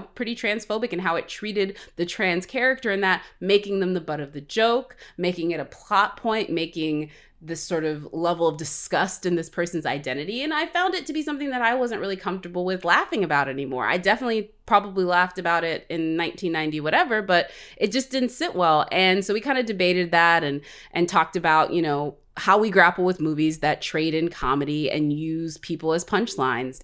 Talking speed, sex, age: 205 wpm, female, 20-39